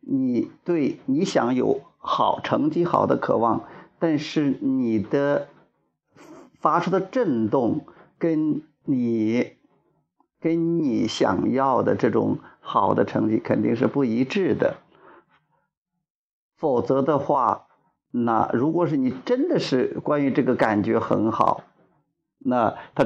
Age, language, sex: 50-69, Chinese, male